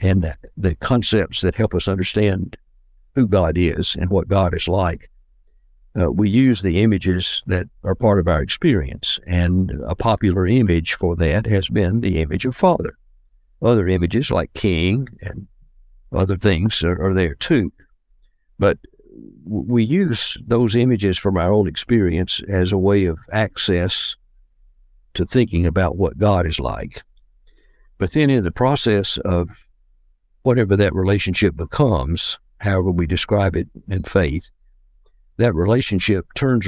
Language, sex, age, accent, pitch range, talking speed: English, male, 60-79, American, 90-110 Hz, 145 wpm